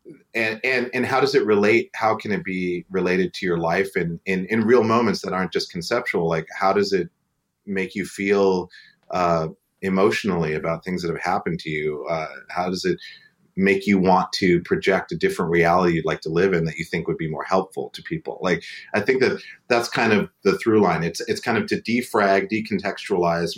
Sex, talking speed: male, 210 wpm